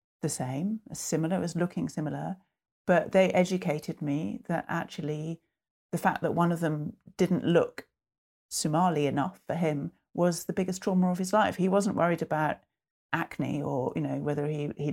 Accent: British